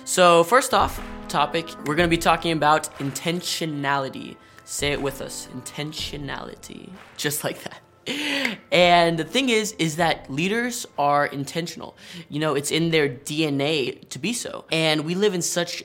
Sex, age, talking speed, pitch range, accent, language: male, 20-39, 155 wpm, 135-165 Hz, American, English